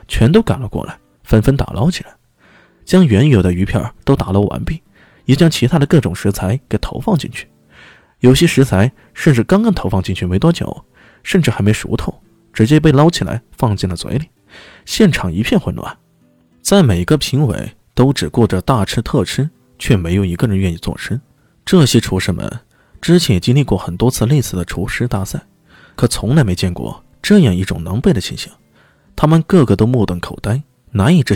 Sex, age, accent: male, 20-39, native